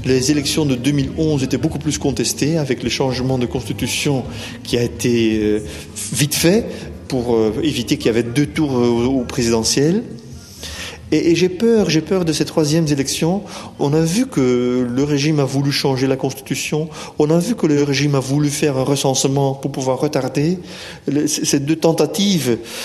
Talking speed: 180 wpm